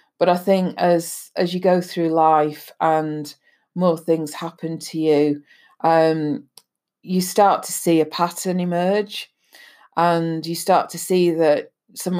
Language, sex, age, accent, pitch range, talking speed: English, female, 40-59, British, 150-170 Hz, 150 wpm